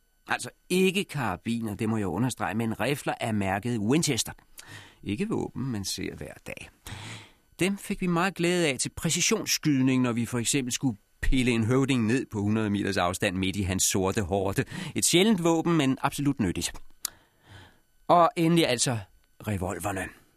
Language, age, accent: Danish, 40-59, native